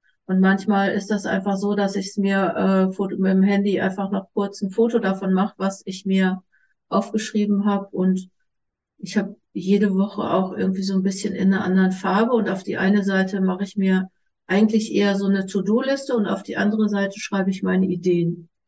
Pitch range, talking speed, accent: 185-215 Hz, 195 wpm, German